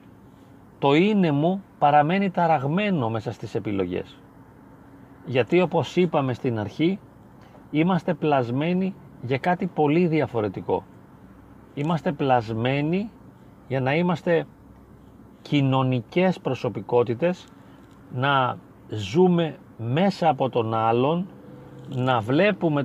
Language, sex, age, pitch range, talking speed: Greek, male, 40-59, 125-165 Hz, 90 wpm